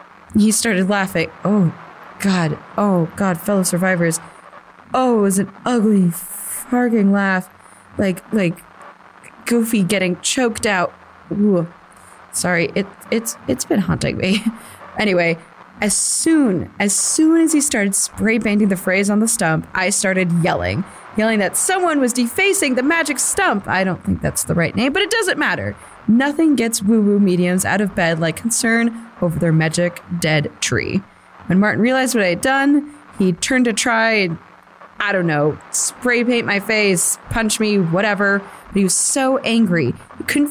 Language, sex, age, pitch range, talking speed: English, female, 20-39, 180-235 Hz, 160 wpm